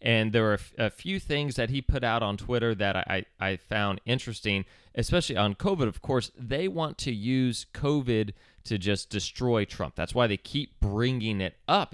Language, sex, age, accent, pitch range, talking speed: English, male, 30-49, American, 100-130 Hz, 190 wpm